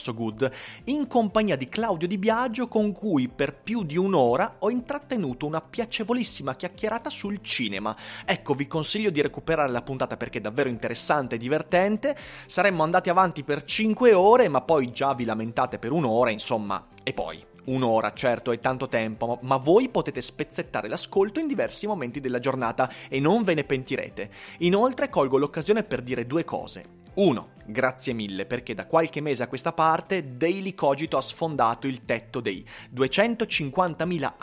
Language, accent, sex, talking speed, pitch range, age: Italian, native, male, 165 wpm, 125-200 Hz, 30-49